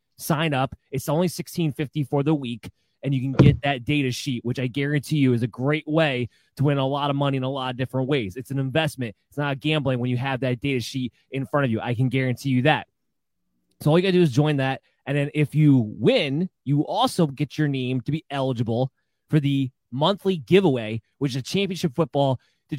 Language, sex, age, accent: English, male, 20-39, American